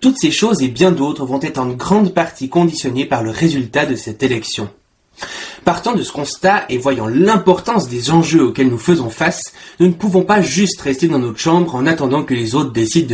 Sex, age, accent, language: male, 30-49, French, French